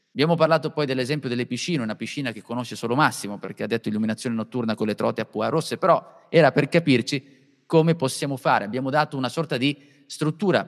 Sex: male